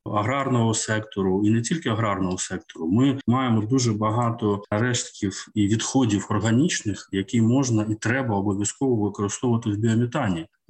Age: 20-39